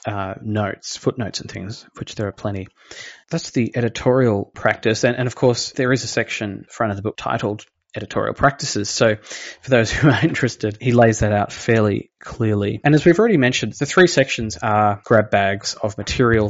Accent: Australian